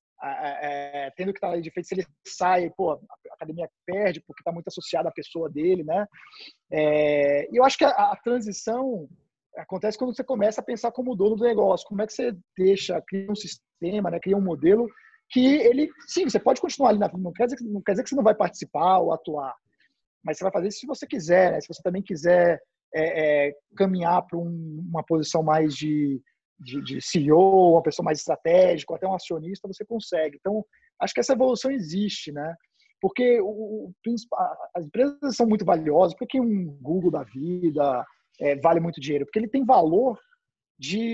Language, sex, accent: English, male, Brazilian